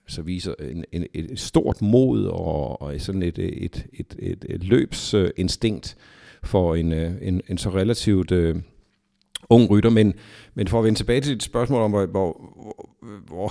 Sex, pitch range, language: male, 85-105 Hz, Danish